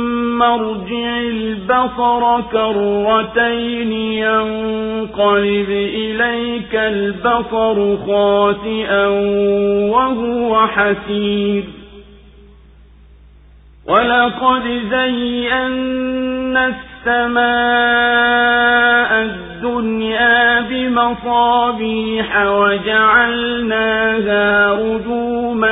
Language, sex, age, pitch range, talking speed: Swahili, male, 50-69, 205-240 Hz, 45 wpm